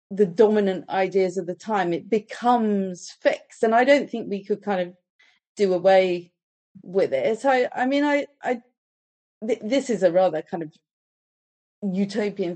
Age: 40-59